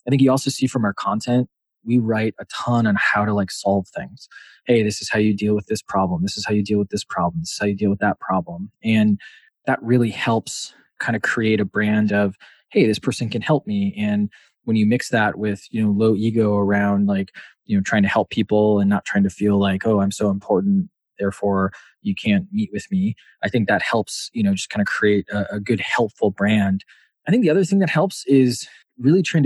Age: 20-39